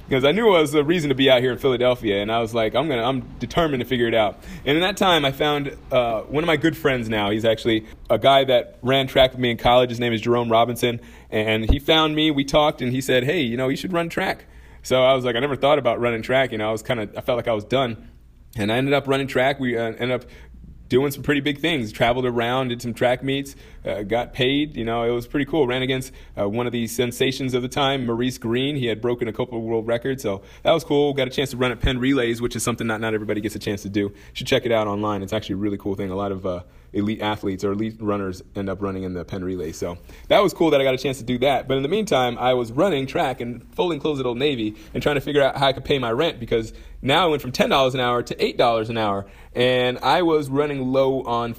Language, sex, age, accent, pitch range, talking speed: English, male, 30-49, American, 110-135 Hz, 285 wpm